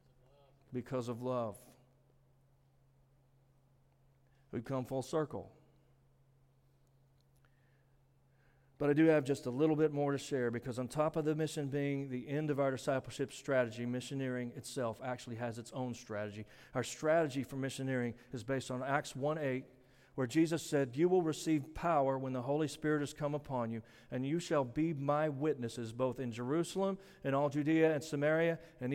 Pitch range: 130-150 Hz